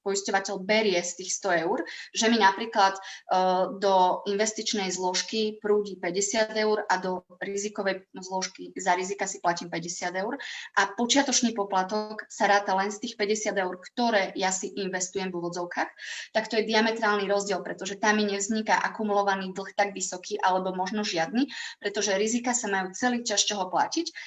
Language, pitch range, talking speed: Slovak, 185-215 Hz, 160 wpm